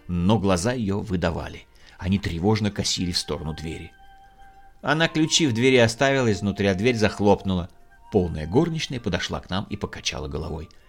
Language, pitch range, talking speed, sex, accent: Russian, 90-135 Hz, 145 wpm, male, native